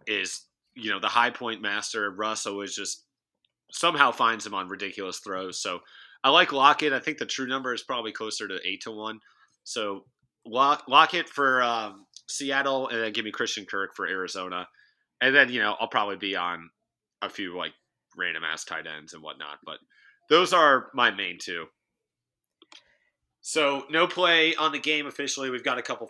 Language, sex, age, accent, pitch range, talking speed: English, male, 30-49, American, 110-140 Hz, 185 wpm